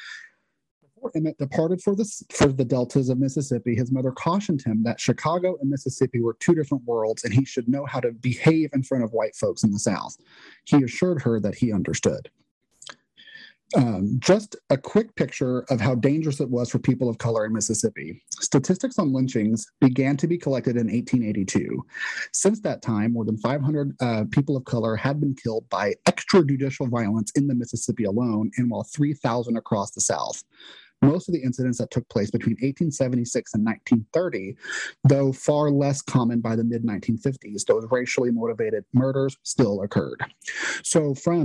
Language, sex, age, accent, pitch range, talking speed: English, male, 30-49, American, 115-150 Hz, 170 wpm